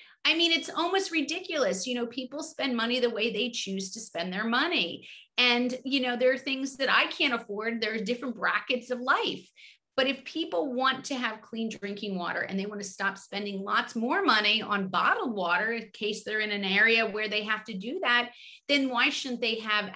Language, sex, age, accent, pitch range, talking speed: English, female, 30-49, American, 190-250 Hz, 215 wpm